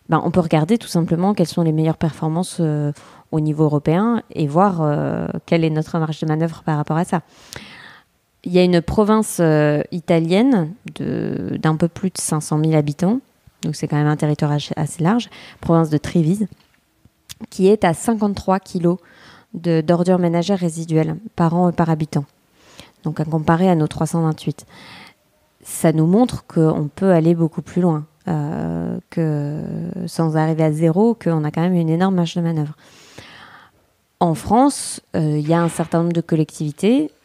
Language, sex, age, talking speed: French, female, 20-39, 170 wpm